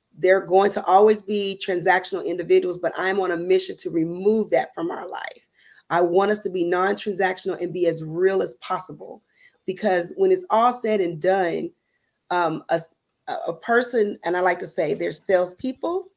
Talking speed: 180 wpm